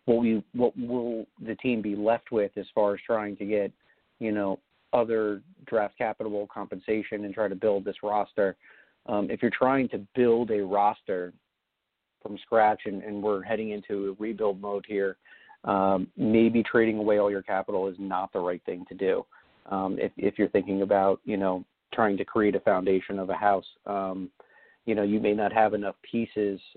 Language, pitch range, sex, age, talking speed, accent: English, 100-110 Hz, male, 40-59, 190 wpm, American